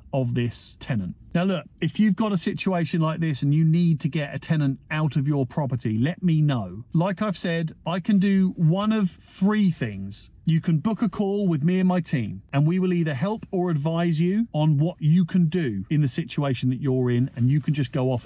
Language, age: English, 40-59